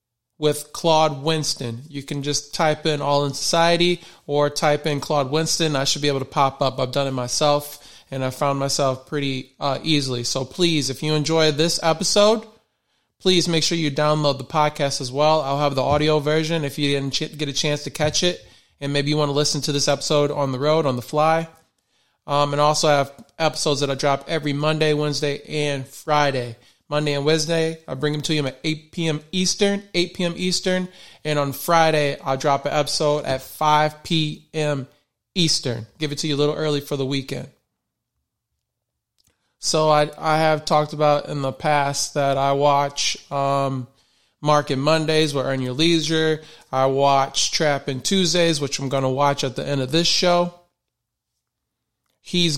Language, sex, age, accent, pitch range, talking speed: English, male, 20-39, American, 140-155 Hz, 185 wpm